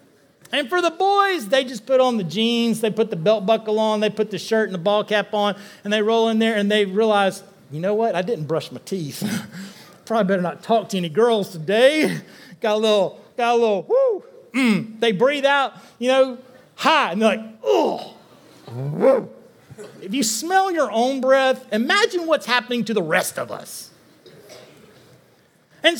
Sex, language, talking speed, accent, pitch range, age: male, English, 190 wpm, American, 200-265 Hz, 40-59